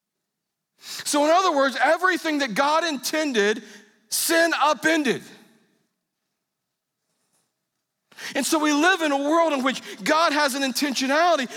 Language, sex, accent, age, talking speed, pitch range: English, male, American, 40-59, 120 wpm, 140-235 Hz